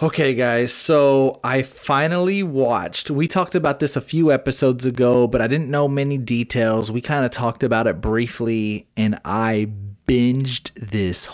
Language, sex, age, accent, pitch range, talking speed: English, male, 30-49, American, 105-135 Hz, 165 wpm